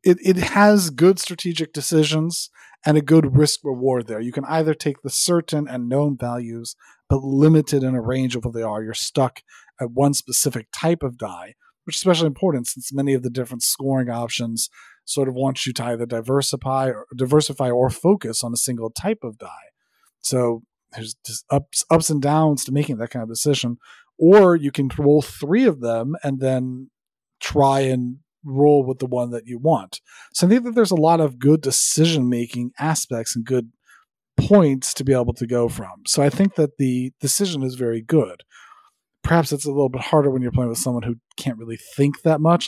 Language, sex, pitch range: English, male, 125-160 Hz